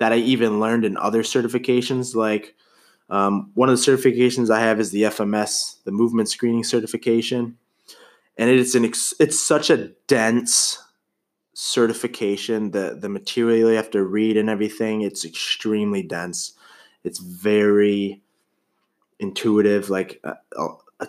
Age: 20-39